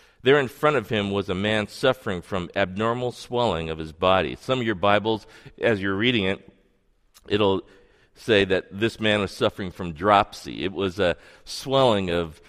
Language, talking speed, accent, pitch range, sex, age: English, 180 wpm, American, 90-125 Hz, male, 40-59